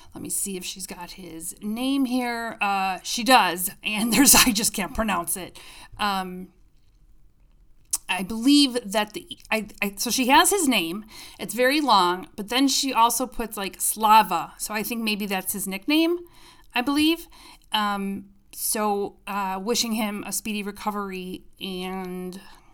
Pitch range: 190-250 Hz